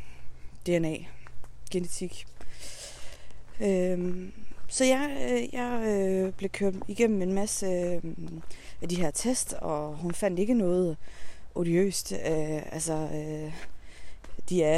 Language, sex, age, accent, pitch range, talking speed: Danish, female, 20-39, native, 150-190 Hz, 115 wpm